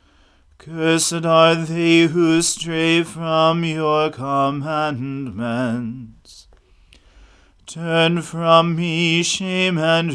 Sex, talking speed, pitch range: male, 75 wpm, 125-165 Hz